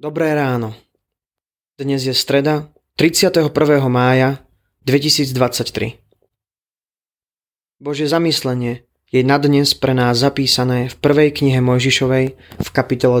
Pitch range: 120-140 Hz